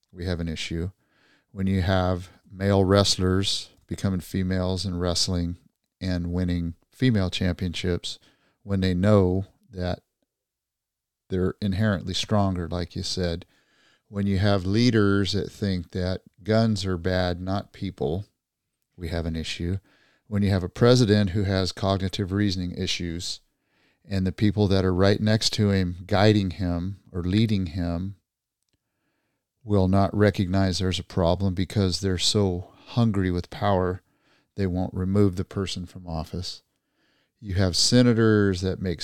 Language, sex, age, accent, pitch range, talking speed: English, male, 40-59, American, 90-100 Hz, 140 wpm